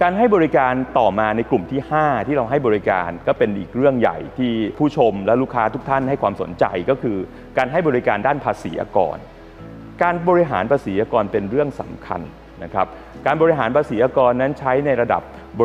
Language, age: Thai, 30-49